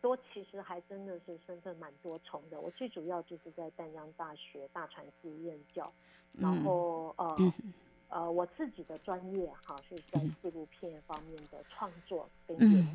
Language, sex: Chinese, female